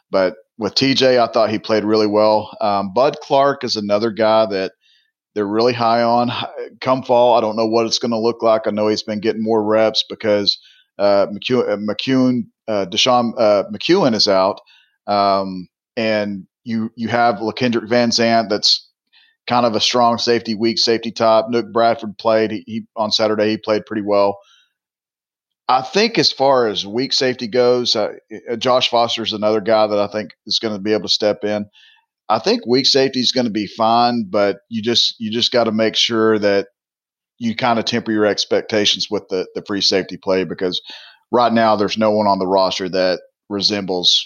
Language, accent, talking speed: English, American, 195 wpm